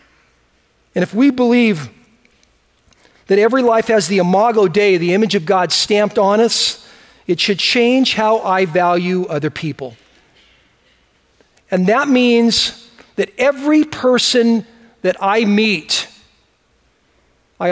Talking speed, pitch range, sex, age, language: 120 wpm, 160-235 Hz, male, 40-59, English